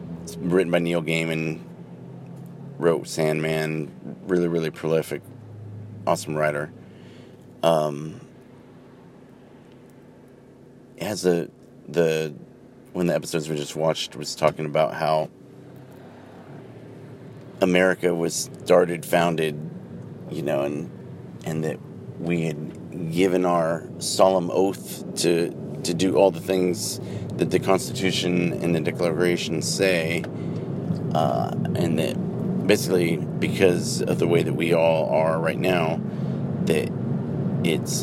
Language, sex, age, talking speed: English, male, 30-49, 110 wpm